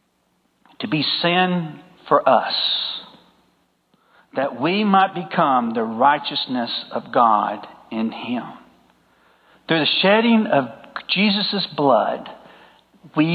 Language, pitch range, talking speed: English, 175-225 Hz, 100 wpm